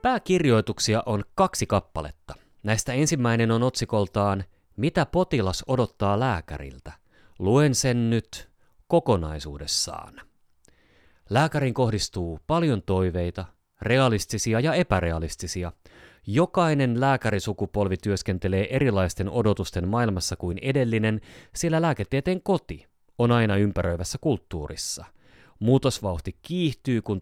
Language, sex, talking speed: Finnish, male, 90 wpm